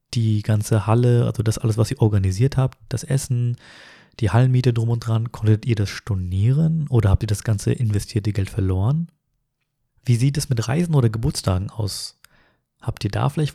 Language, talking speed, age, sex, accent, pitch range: German, 180 wpm, 30-49, male, German, 110-140 Hz